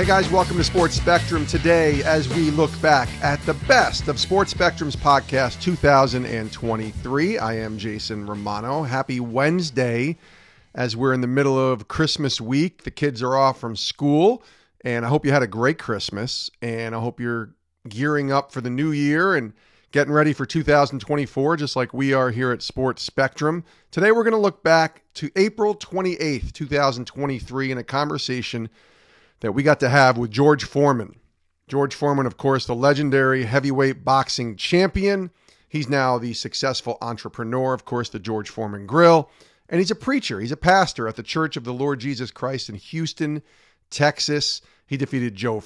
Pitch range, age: 120-155 Hz, 40-59